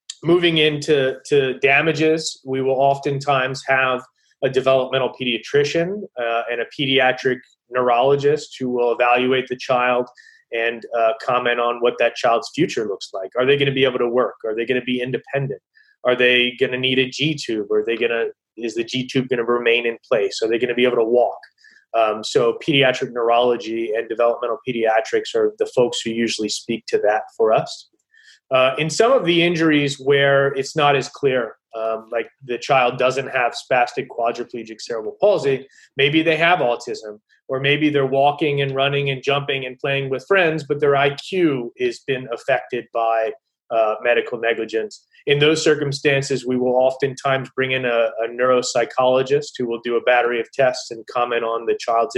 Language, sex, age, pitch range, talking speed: English, male, 20-39, 120-150 Hz, 185 wpm